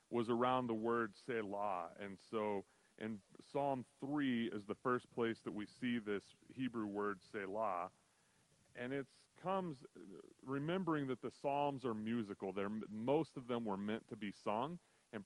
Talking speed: 155 wpm